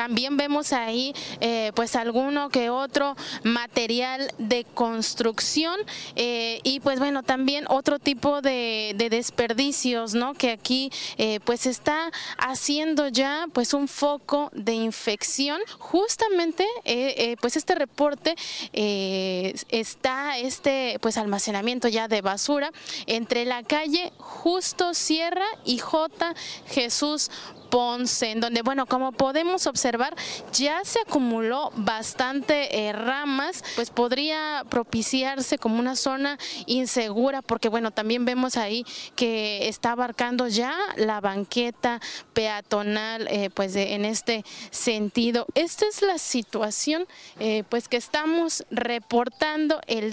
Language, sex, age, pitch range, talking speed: Spanish, female, 20-39, 230-290 Hz, 125 wpm